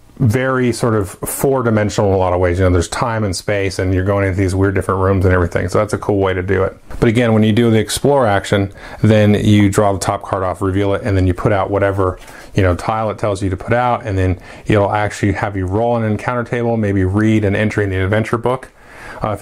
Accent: American